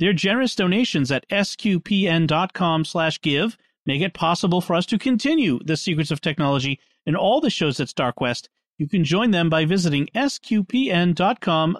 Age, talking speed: 40-59, 160 wpm